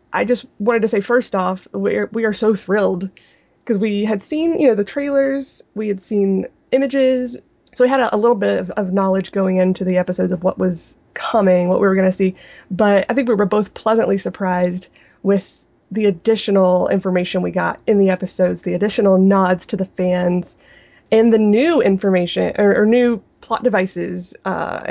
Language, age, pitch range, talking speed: English, 20-39, 185-230 Hz, 200 wpm